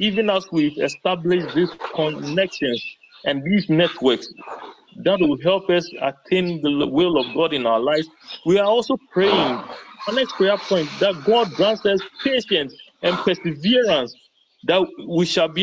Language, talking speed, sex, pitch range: English, 155 wpm, male, 170-215 Hz